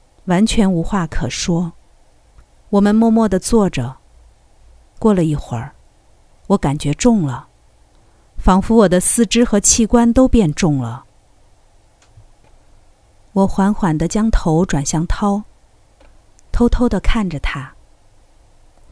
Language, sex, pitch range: Chinese, female, 155-220 Hz